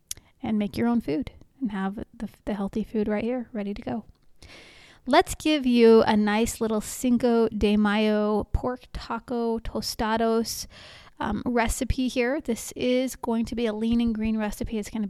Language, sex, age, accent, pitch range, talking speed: English, female, 30-49, American, 215-250 Hz, 170 wpm